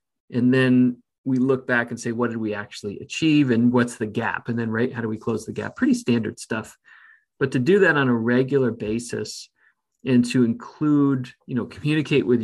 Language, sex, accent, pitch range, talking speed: English, male, American, 120-145 Hz, 205 wpm